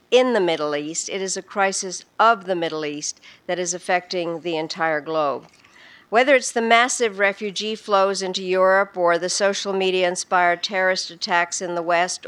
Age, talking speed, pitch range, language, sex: 60-79, 175 wpm, 175-215 Hz, English, female